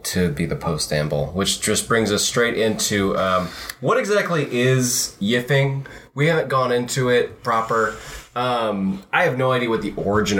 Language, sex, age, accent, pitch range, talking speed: English, male, 20-39, American, 100-130 Hz, 165 wpm